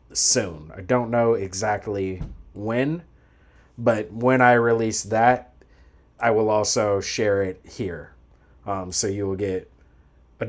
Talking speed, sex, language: 130 wpm, male, English